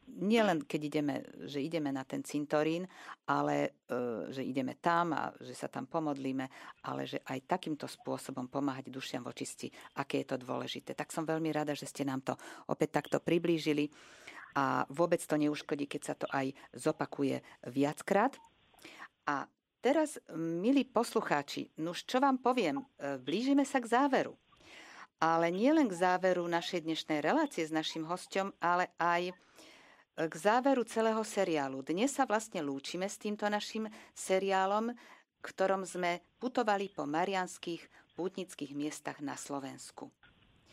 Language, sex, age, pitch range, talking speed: Slovak, female, 50-69, 150-210 Hz, 145 wpm